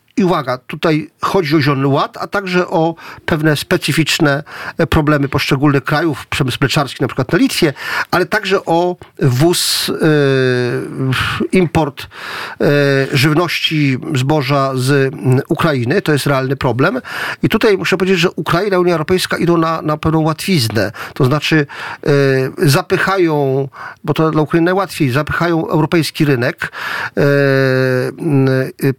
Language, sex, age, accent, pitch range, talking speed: Polish, male, 40-59, native, 140-175 Hz, 130 wpm